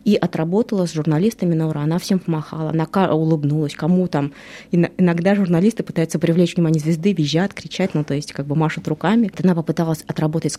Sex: female